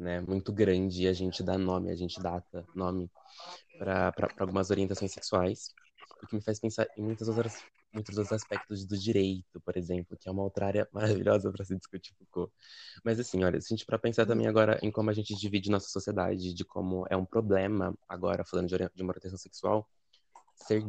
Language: Portuguese